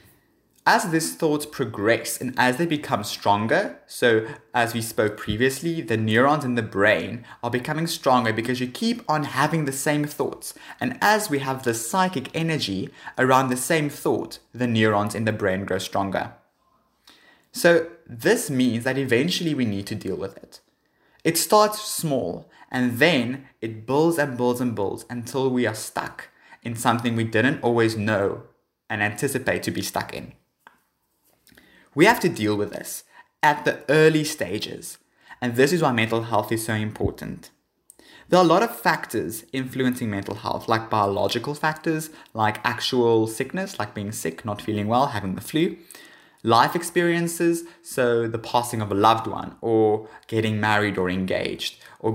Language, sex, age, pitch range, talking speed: English, male, 20-39, 110-150 Hz, 165 wpm